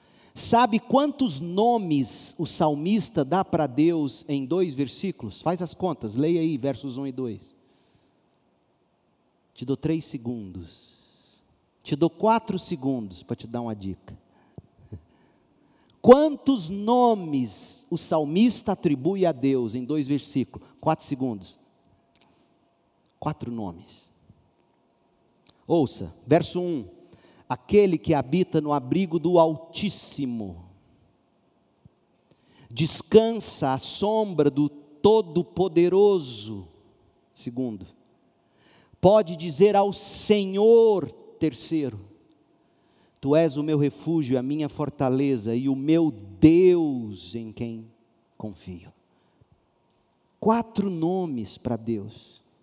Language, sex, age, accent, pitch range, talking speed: Portuguese, male, 50-69, Brazilian, 120-180 Hz, 100 wpm